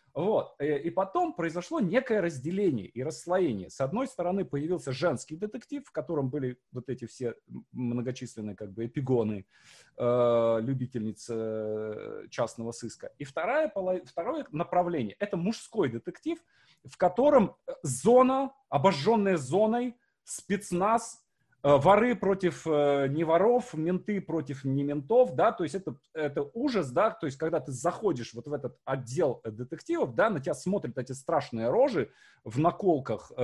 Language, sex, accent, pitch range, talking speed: Russian, male, native, 130-200 Hz, 125 wpm